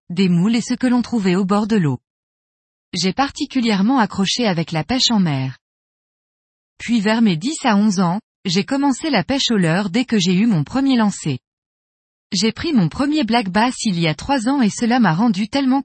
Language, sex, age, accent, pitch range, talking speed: French, female, 20-39, French, 180-250 Hz, 210 wpm